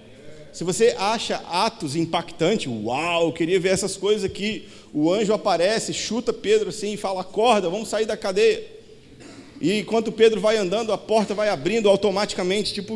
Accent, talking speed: Brazilian, 160 wpm